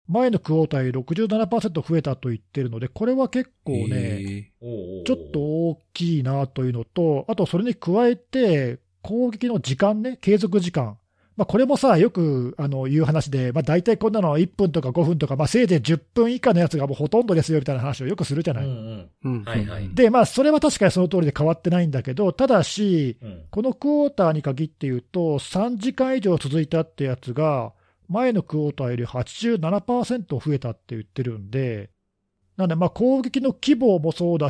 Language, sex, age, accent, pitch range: Japanese, male, 40-59, native, 130-210 Hz